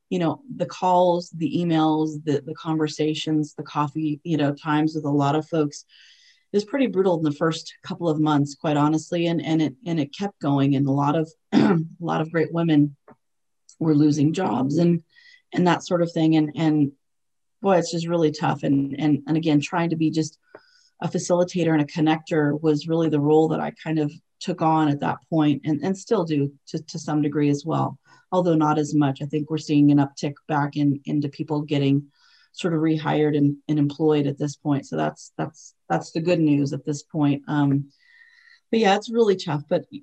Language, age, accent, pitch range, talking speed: English, 30-49, American, 145-170 Hz, 210 wpm